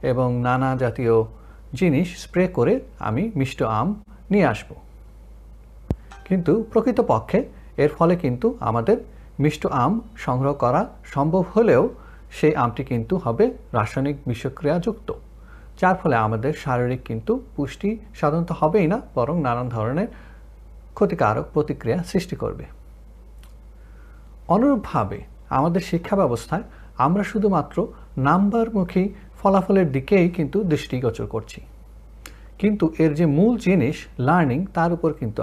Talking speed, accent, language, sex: 115 wpm, native, Bengali, male